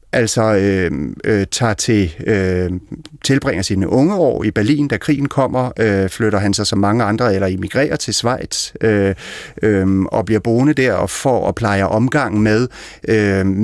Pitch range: 100-120 Hz